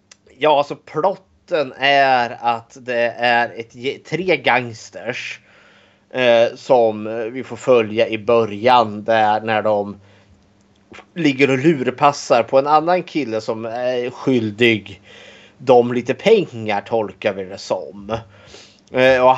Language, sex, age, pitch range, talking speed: Swedish, male, 30-49, 110-135 Hz, 110 wpm